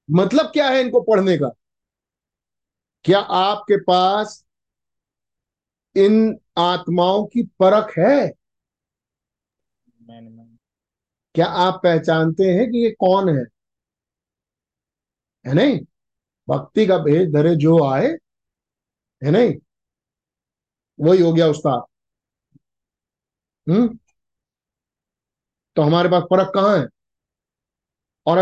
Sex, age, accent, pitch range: male, 50-69, native, 160-195 Hz